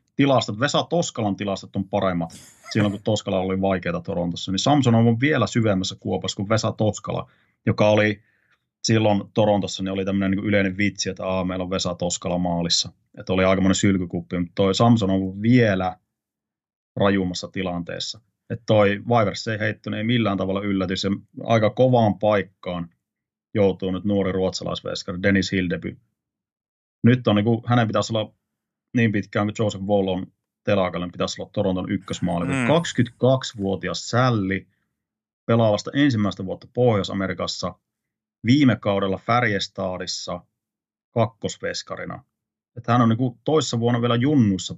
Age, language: 30-49, Finnish